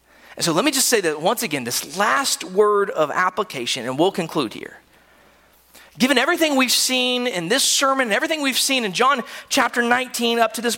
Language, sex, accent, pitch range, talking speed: English, male, American, 255-345 Hz, 200 wpm